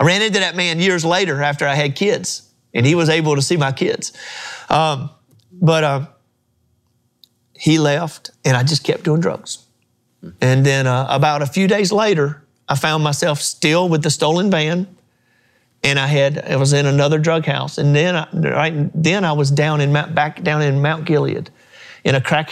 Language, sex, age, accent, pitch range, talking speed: English, male, 40-59, American, 130-165 Hz, 190 wpm